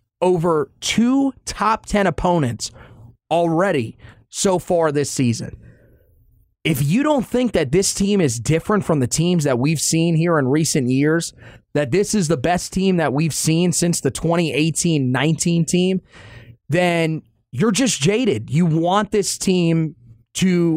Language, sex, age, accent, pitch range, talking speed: English, male, 30-49, American, 125-180 Hz, 145 wpm